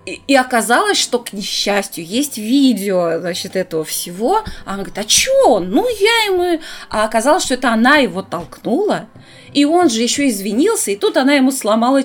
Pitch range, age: 195-275 Hz, 20-39